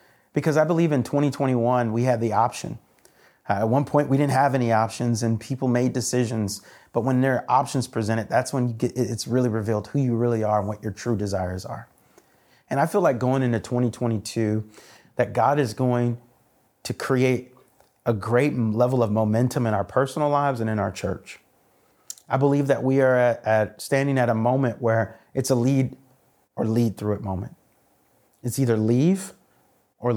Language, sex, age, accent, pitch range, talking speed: English, male, 30-49, American, 110-130 Hz, 190 wpm